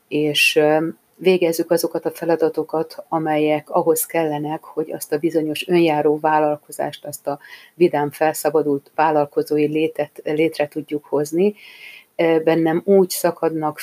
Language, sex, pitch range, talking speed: Hungarian, female, 155-180 Hz, 110 wpm